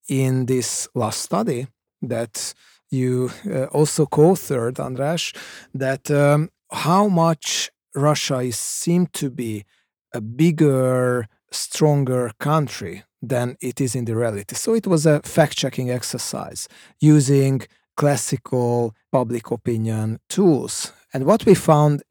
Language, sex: Hungarian, male